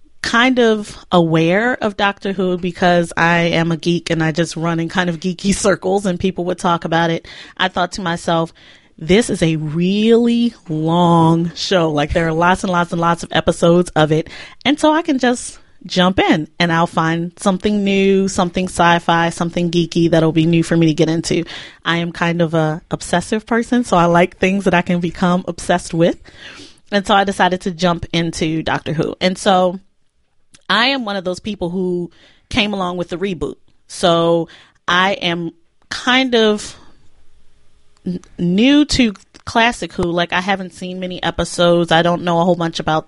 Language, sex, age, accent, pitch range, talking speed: English, female, 30-49, American, 170-195 Hz, 185 wpm